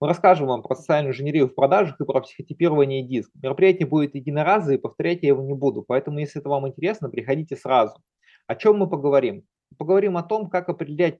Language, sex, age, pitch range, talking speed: Russian, male, 20-39, 130-165 Hz, 195 wpm